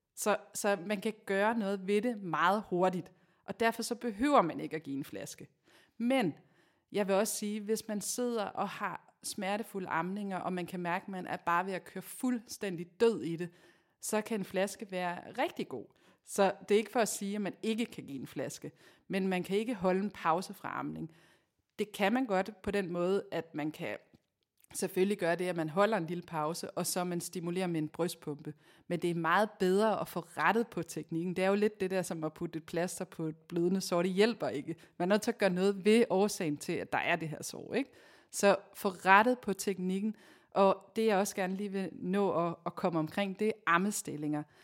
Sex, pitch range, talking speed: female, 170-205 Hz, 225 wpm